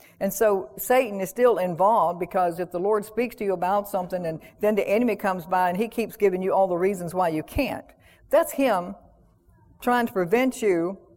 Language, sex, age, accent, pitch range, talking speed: English, female, 60-79, American, 170-205 Hz, 205 wpm